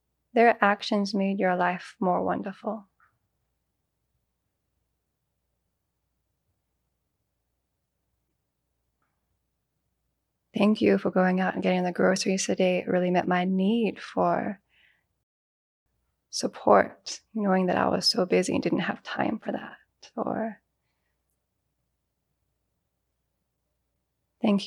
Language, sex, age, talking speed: English, female, 20-39, 90 wpm